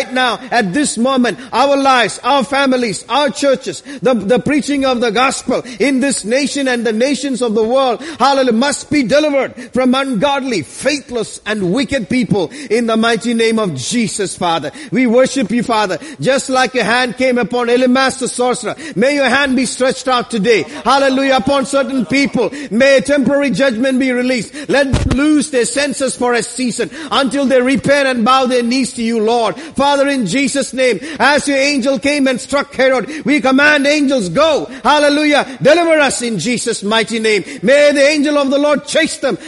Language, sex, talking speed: English, male, 185 wpm